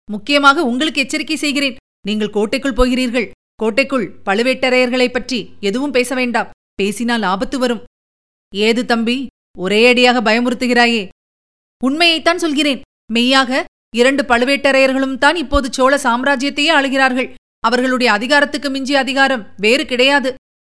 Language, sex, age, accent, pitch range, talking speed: Tamil, female, 30-49, native, 235-280 Hz, 100 wpm